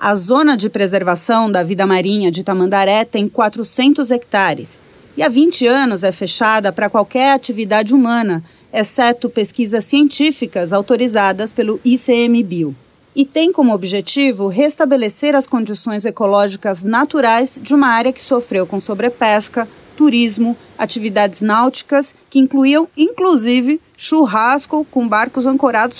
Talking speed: 125 wpm